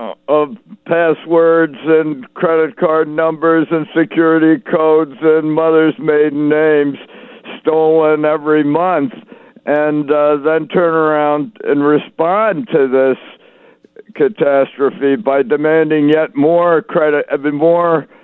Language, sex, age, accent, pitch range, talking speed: English, male, 60-79, American, 135-165 Hz, 110 wpm